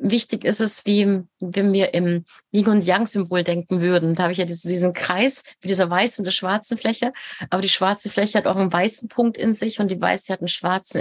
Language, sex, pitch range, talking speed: German, female, 180-210 Hz, 235 wpm